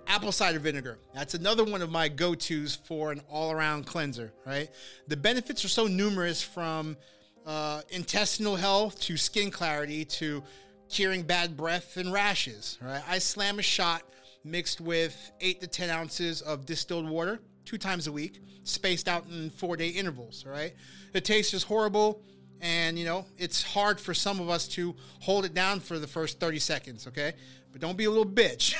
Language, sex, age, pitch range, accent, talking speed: English, male, 30-49, 150-195 Hz, American, 185 wpm